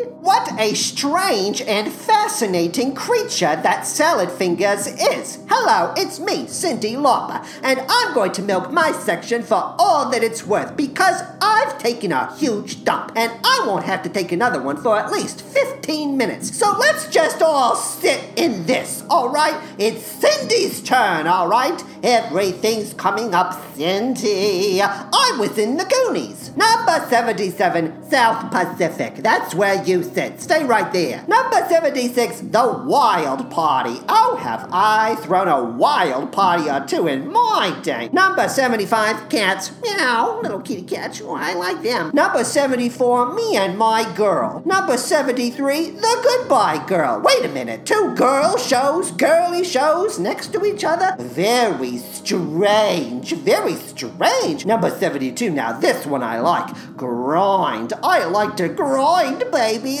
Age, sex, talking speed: 40-59, male, 145 wpm